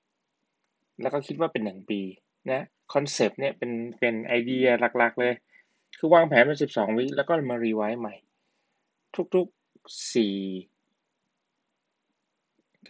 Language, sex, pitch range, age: Thai, male, 110-140 Hz, 20-39